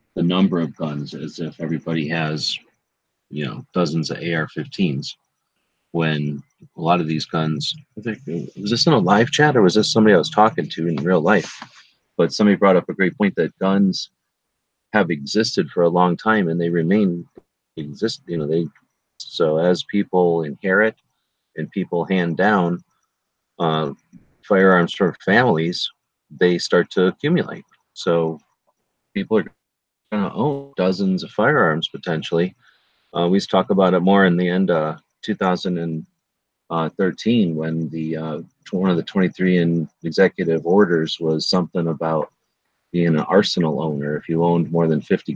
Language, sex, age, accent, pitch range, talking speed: English, male, 40-59, American, 80-95 Hz, 155 wpm